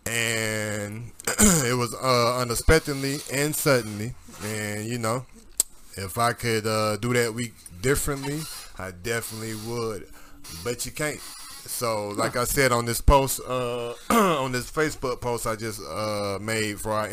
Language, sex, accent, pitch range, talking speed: English, male, American, 100-120 Hz, 145 wpm